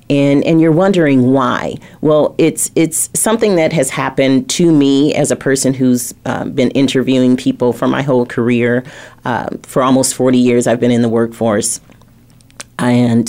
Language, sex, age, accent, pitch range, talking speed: English, female, 40-59, American, 120-145 Hz, 165 wpm